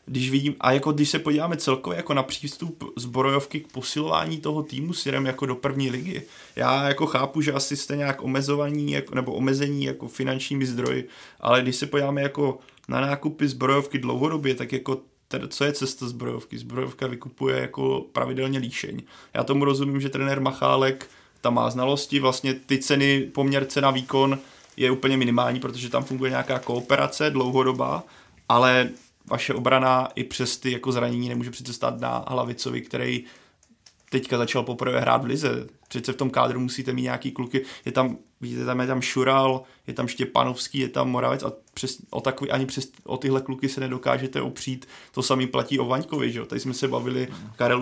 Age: 20-39